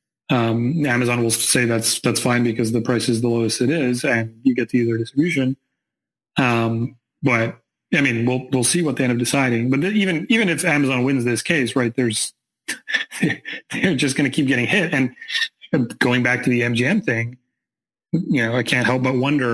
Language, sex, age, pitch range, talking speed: English, male, 30-49, 120-145 Hz, 200 wpm